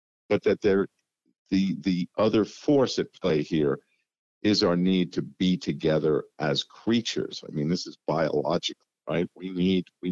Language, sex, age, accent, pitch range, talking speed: English, male, 50-69, American, 85-105 Hz, 160 wpm